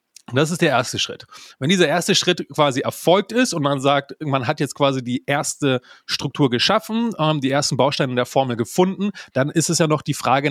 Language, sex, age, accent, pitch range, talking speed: German, male, 30-49, German, 125-160 Hz, 205 wpm